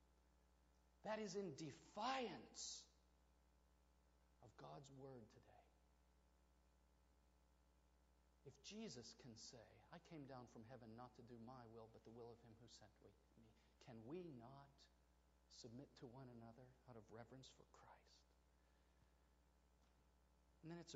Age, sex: 50-69, male